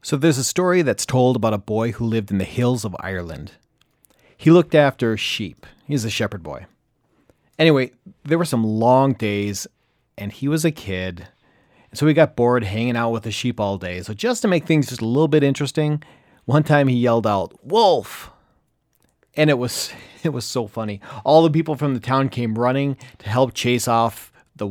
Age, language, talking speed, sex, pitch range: 30-49, English, 200 wpm, male, 110-155 Hz